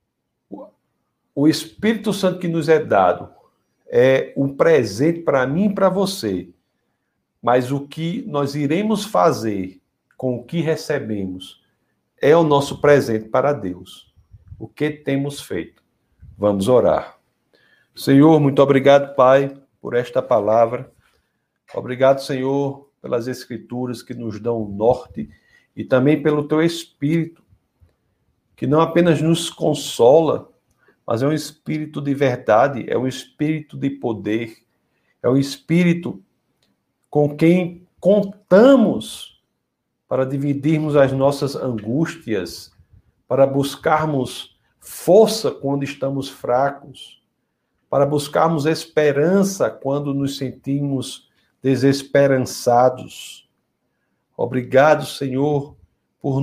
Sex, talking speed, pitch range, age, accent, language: male, 105 wpm, 130-160 Hz, 60-79, Brazilian, Portuguese